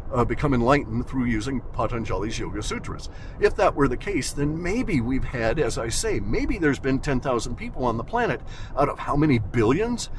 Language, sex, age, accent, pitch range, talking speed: English, male, 50-69, American, 115-145 Hz, 200 wpm